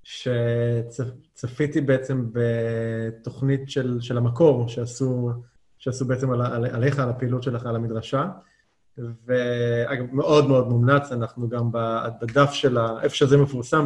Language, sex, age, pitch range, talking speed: Hebrew, male, 20-39, 120-145 Hz, 125 wpm